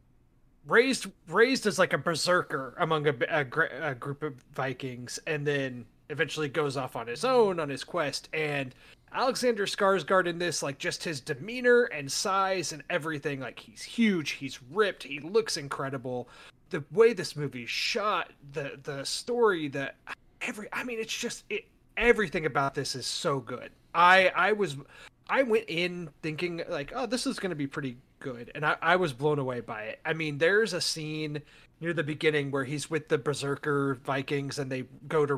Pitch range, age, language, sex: 140-185 Hz, 30-49, English, male